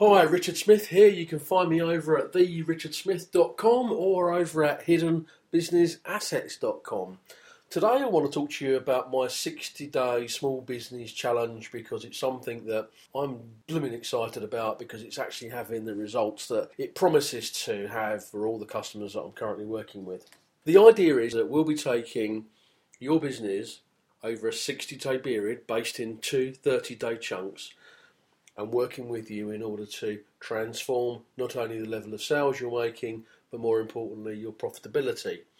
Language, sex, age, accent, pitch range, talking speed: English, male, 40-59, British, 110-160 Hz, 165 wpm